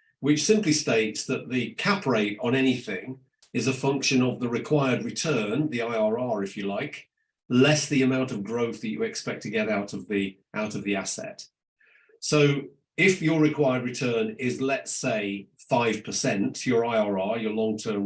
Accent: British